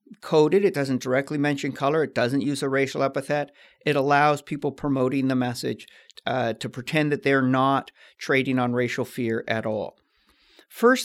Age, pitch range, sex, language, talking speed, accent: 50-69, 130-150 Hz, male, English, 170 wpm, American